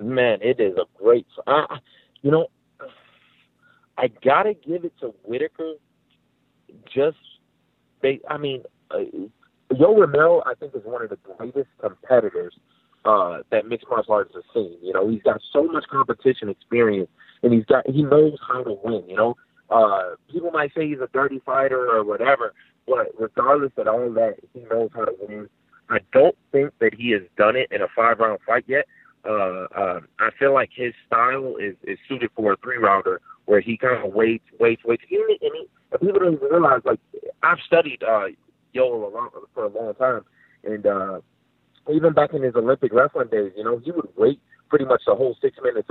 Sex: male